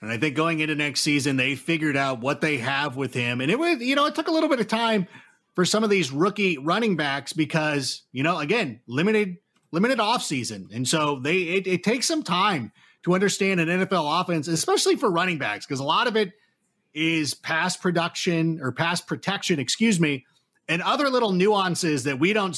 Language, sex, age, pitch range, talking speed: English, male, 30-49, 150-205 Hz, 205 wpm